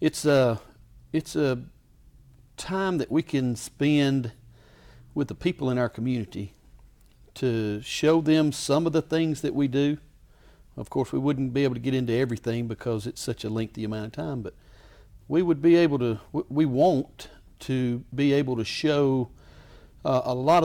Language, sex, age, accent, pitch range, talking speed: English, male, 50-69, American, 115-140 Hz, 170 wpm